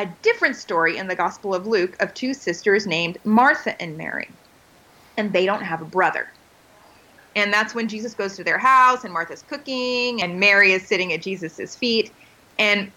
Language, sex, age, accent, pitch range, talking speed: English, female, 30-49, American, 205-290 Hz, 185 wpm